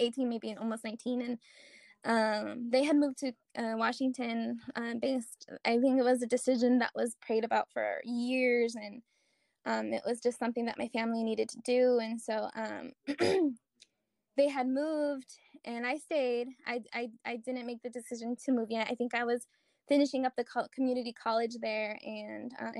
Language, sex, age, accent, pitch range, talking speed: English, female, 10-29, American, 225-255 Hz, 185 wpm